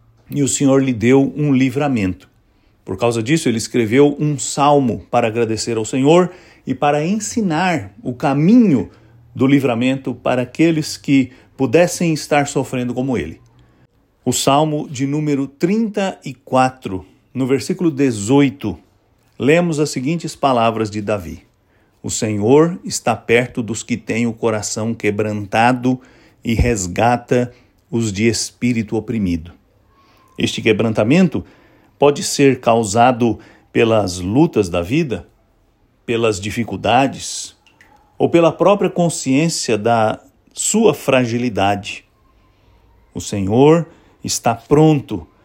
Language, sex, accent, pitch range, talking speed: English, male, Brazilian, 110-140 Hz, 110 wpm